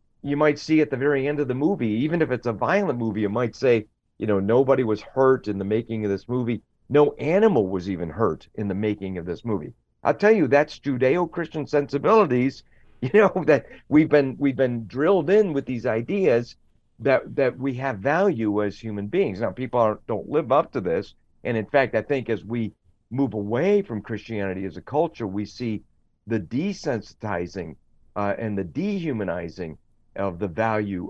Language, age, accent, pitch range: English, 50-69, American, 105-145 Hz